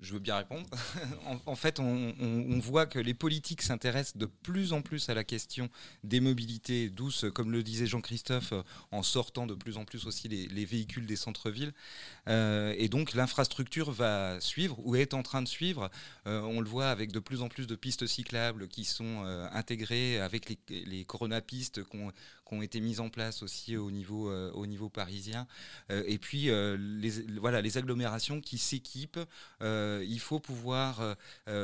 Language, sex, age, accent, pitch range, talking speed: French, male, 30-49, French, 105-130 Hz, 190 wpm